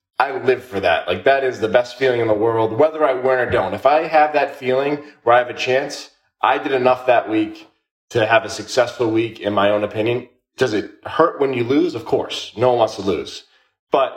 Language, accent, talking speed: English, American, 235 wpm